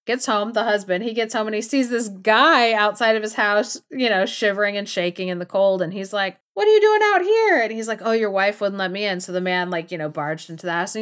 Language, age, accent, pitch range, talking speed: English, 30-49, American, 185-250 Hz, 295 wpm